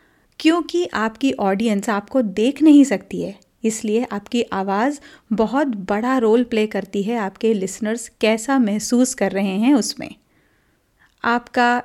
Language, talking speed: Hindi, 130 wpm